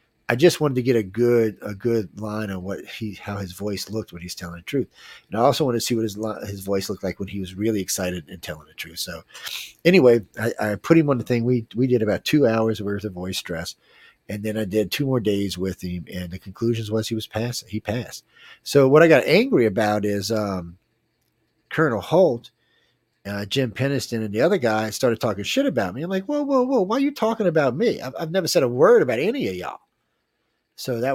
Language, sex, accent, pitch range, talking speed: English, male, American, 100-125 Hz, 240 wpm